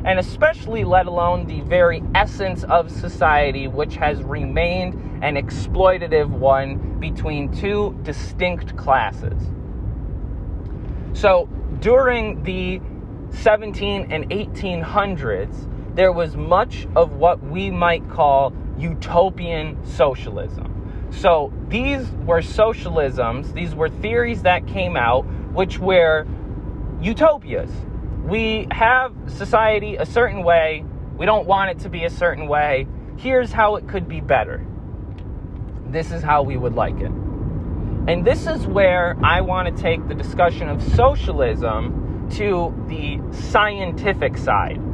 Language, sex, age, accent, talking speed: English, male, 20-39, American, 125 wpm